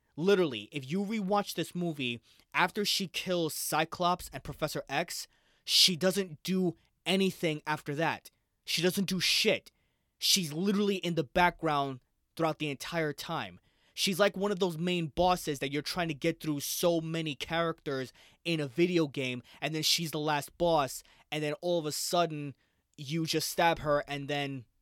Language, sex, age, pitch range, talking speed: English, male, 20-39, 140-180 Hz, 170 wpm